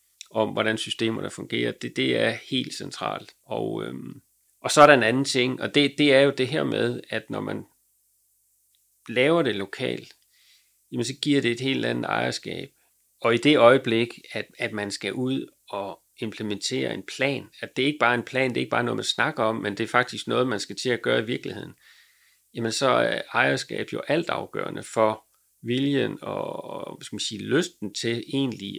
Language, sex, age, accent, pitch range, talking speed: Danish, male, 40-59, native, 110-135 Hz, 200 wpm